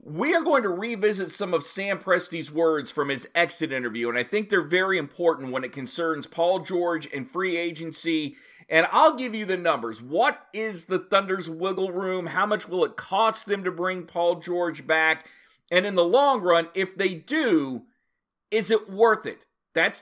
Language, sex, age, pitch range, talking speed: English, male, 40-59, 155-195 Hz, 190 wpm